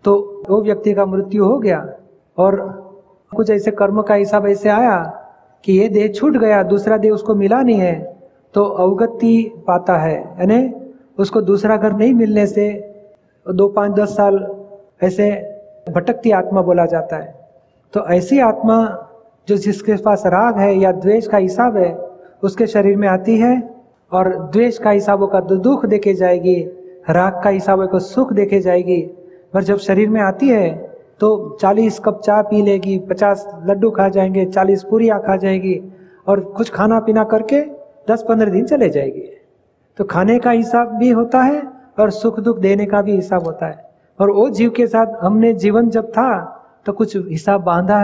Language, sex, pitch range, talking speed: Hindi, male, 185-220 Hz, 170 wpm